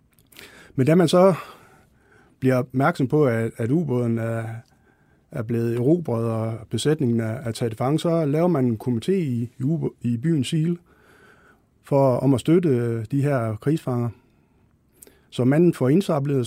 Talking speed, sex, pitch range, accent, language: 150 wpm, male, 115-145 Hz, native, Danish